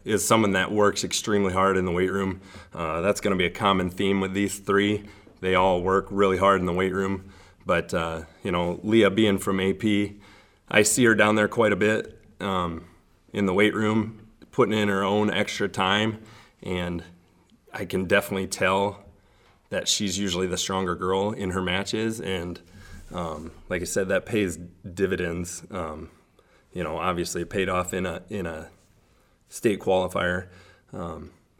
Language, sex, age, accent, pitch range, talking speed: English, male, 30-49, American, 90-100 Hz, 175 wpm